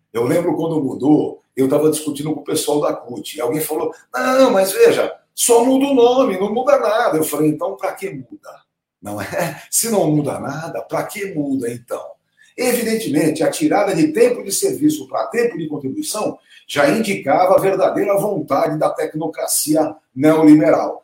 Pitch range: 155-255 Hz